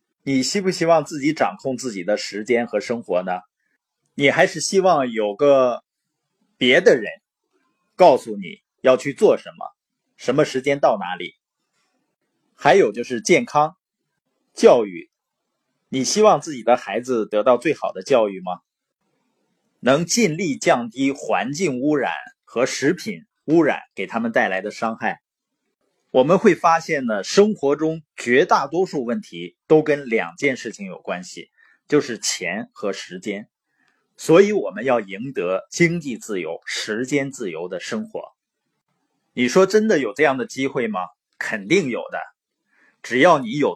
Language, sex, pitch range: Chinese, male, 125-200 Hz